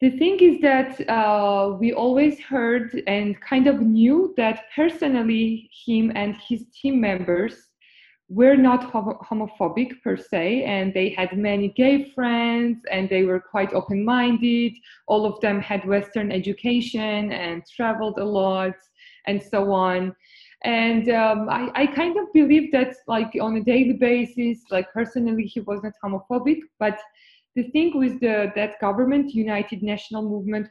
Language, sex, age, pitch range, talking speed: English, female, 20-39, 200-240 Hz, 145 wpm